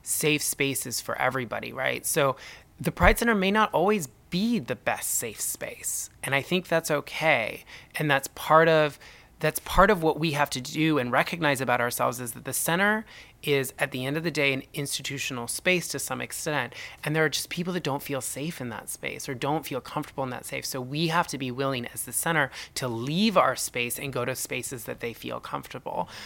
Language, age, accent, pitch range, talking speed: English, 20-39, American, 120-145 Hz, 215 wpm